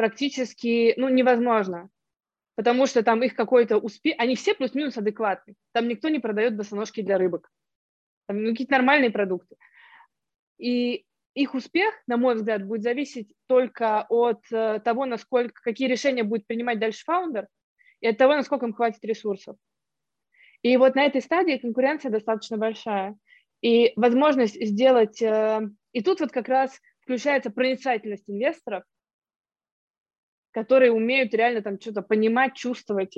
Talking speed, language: 135 wpm, Russian